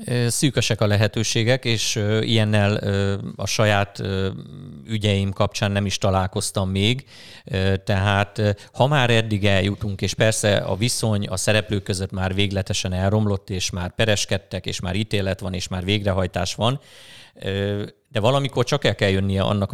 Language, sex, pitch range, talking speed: Hungarian, male, 95-110 Hz, 140 wpm